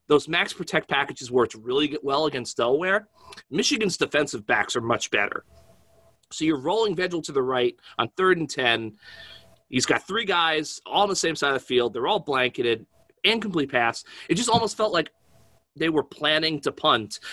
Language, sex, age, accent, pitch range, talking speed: English, male, 30-49, American, 125-165 Hz, 190 wpm